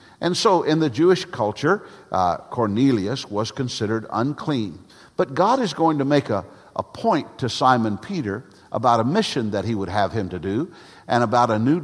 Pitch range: 110-145 Hz